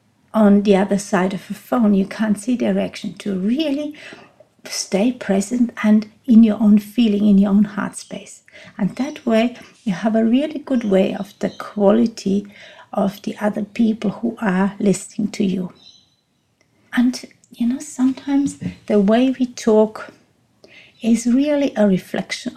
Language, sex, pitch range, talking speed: English, female, 195-235 Hz, 155 wpm